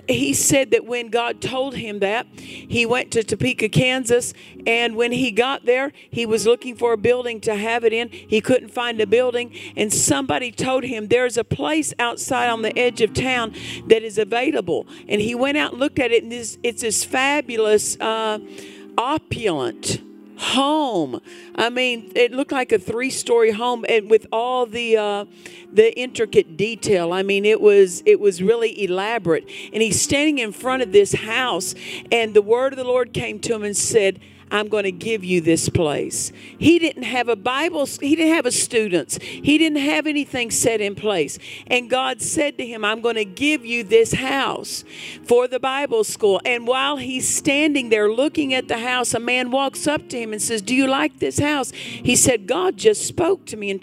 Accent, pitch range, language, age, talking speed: American, 220-280 Hz, English, 50-69, 200 wpm